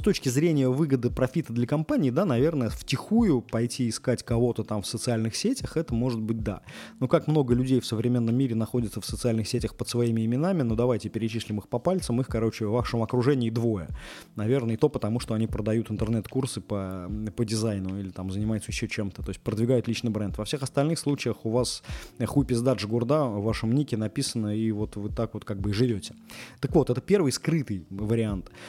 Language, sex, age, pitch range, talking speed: Russian, male, 20-39, 105-130 Hz, 200 wpm